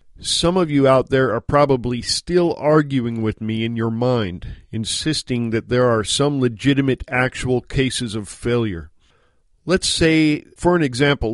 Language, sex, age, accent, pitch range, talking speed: English, male, 50-69, American, 110-145 Hz, 155 wpm